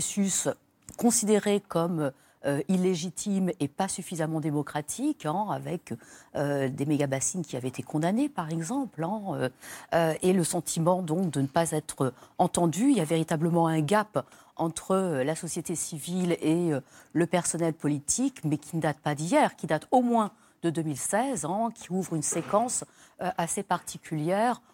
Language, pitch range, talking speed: French, 150-190 Hz, 160 wpm